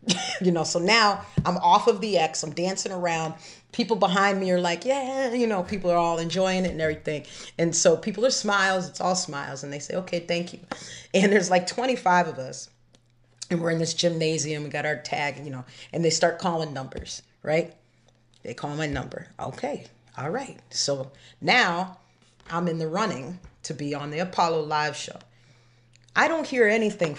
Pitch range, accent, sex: 150-195 Hz, American, female